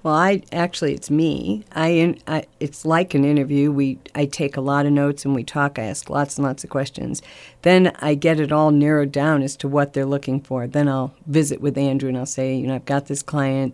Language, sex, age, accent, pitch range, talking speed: English, female, 50-69, American, 135-150 Hz, 240 wpm